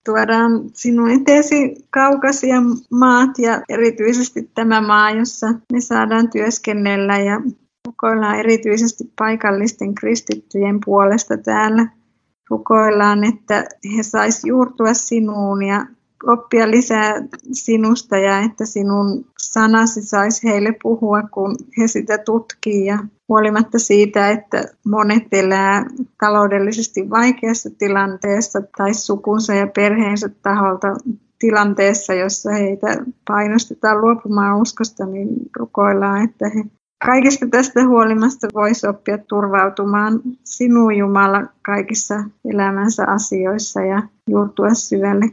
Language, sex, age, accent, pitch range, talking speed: Finnish, female, 20-39, native, 205-235 Hz, 100 wpm